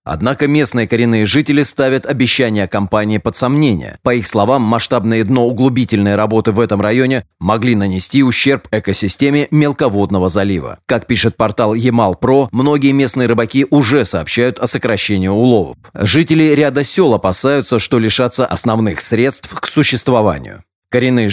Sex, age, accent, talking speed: male, 30-49, native, 135 wpm